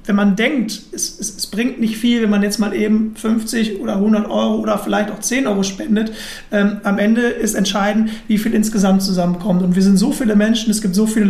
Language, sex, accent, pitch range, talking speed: German, male, German, 195-220 Hz, 230 wpm